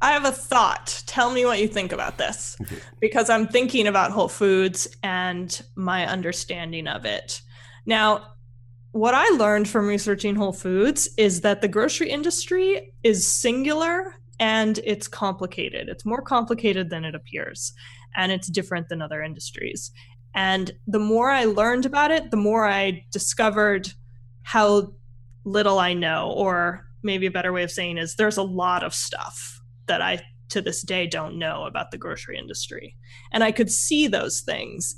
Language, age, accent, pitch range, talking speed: English, 20-39, American, 130-215 Hz, 165 wpm